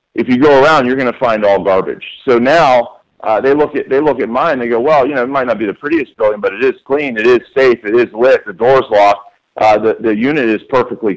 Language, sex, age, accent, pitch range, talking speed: English, male, 40-59, American, 100-130 Hz, 275 wpm